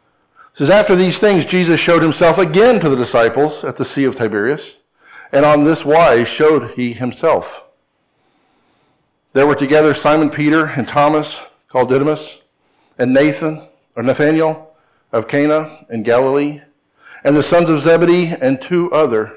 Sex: male